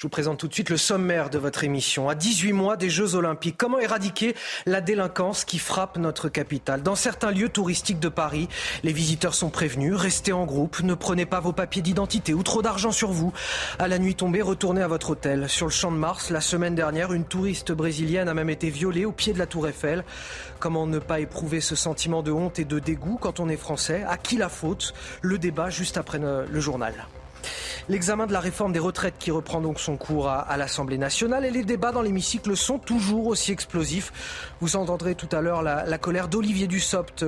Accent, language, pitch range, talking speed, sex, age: French, French, 155-195 Hz, 220 wpm, male, 30-49